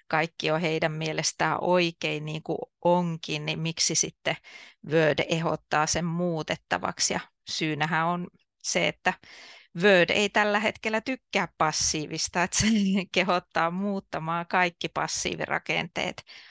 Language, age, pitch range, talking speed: Finnish, 30-49, 160-185 Hz, 115 wpm